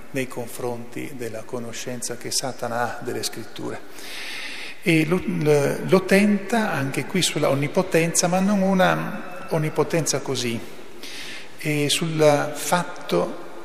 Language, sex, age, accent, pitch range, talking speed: Italian, male, 50-69, native, 130-165 Hz, 110 wpm